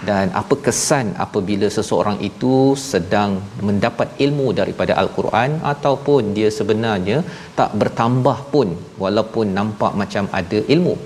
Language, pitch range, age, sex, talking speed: Malayalam, 100-125 Hz, 40-59, male, 120 wpm